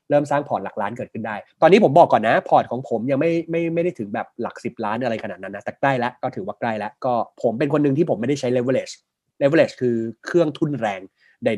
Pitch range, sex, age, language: 115-160 Hz, male, 20-39, Thai